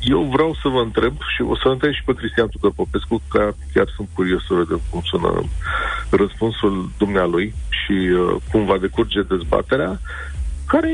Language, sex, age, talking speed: Romanian, male, 40-59, 165 wpm